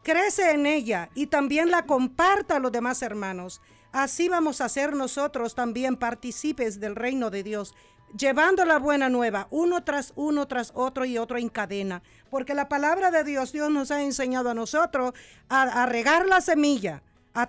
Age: 50-69